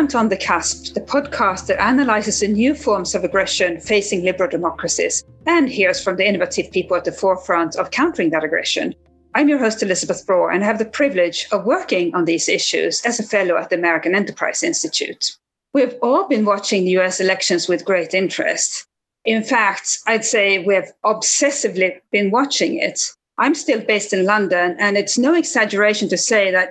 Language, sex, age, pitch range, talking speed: English, female, 40-59, 185-235 Hz, 190 wpm